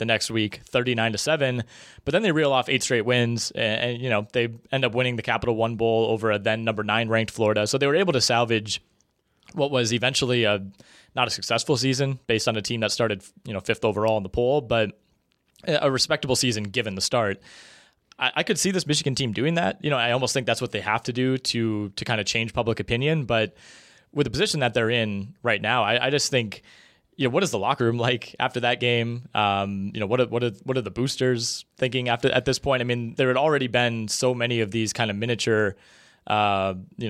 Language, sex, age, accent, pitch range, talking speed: English, male, 20-39, American, 105-125 Hz, 245 wpm